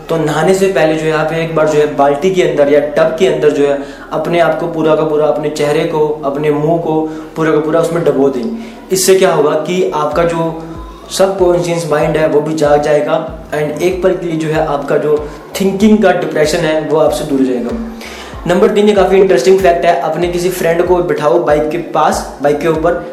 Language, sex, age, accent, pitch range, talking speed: Hindi, male, 20-39, native, 150-180 Hz, 225 wpm